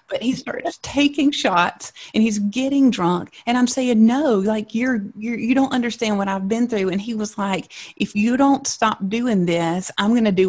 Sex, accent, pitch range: female, American, 175-225 Hz